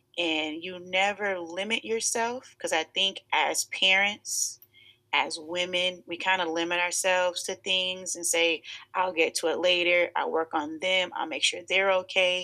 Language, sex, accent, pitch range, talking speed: English, female, American, 160-200 Hz, 170 wpm